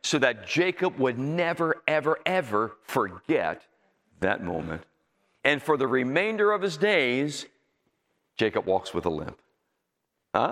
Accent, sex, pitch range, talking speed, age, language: American, male, 135-190 Hz, 130 wpm, 50-69, English